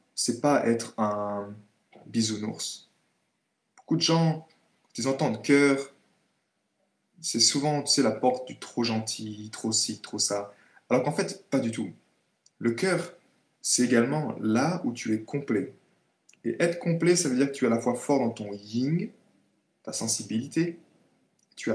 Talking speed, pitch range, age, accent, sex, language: 170 wpm, 110-135 Hz, 20-39, French, male, French